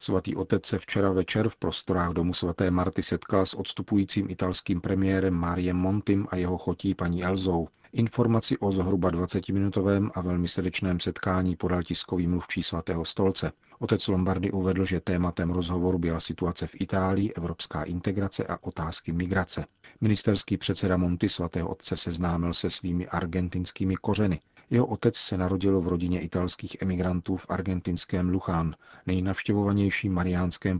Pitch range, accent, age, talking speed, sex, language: 85-95 Hz, native, 40-59, 140 wpm, male, Czech